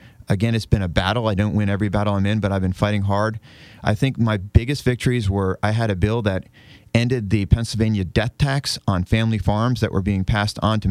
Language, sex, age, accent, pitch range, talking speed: English, male, 30-49, American, 100-120 Hz, 230 wpm